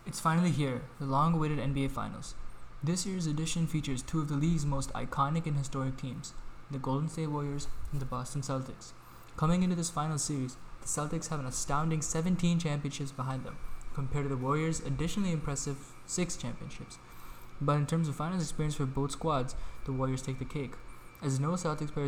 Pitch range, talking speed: 135-155 Hz, 185 wpm